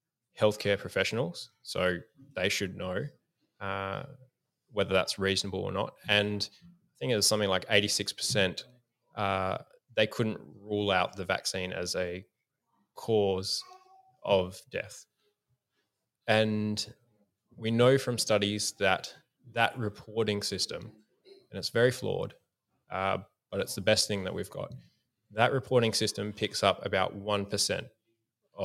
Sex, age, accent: male, 20-39, Australian